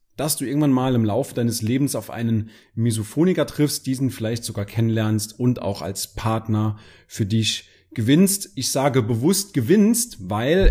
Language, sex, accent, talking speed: German, male, German, 155 wpm